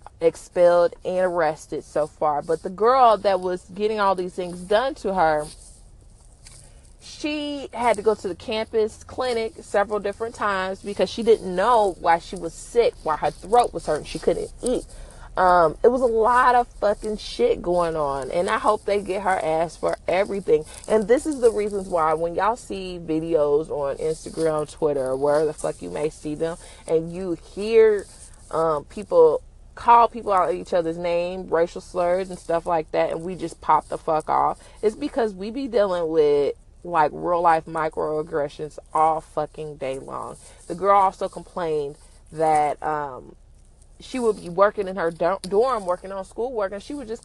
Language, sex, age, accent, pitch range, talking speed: English, female, 30-49, American, 165-225 Hz, 180 wpm